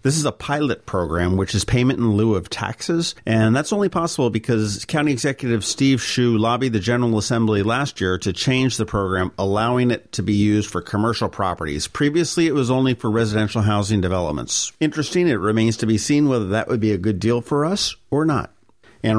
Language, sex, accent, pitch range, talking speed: English, male, American, 105-130 Hz, 205 wpm